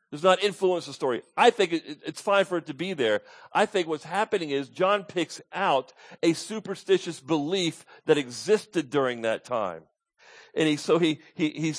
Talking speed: 195 wpm